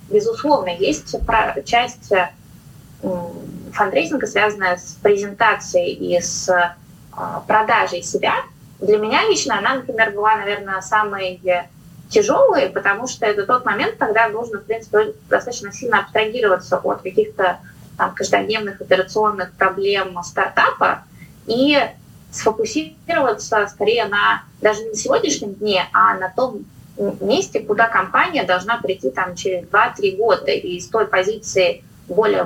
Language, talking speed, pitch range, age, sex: Russian, 120 wpm, 180-220 Hz, 20-39, female